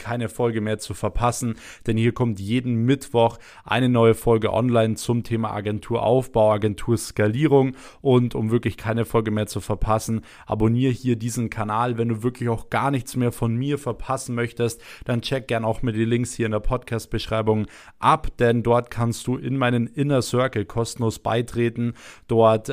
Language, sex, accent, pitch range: German, male, German, 110-125 Hz